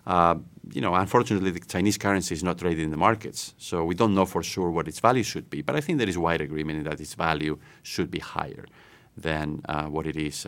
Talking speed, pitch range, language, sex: 240 wpm, 80-100 Hz, English, male